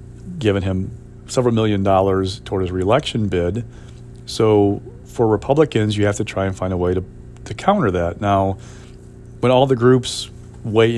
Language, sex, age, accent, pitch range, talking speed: English, male, 40-59, American, 100-120 Hz, 165 wpm